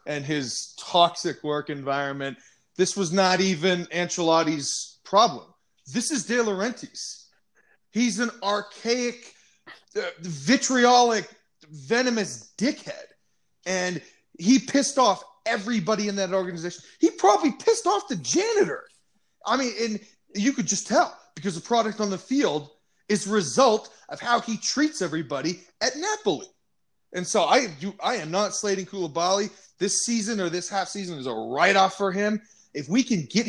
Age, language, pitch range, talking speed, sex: 30-49, English, 185-265 Hz, 150 wpm, male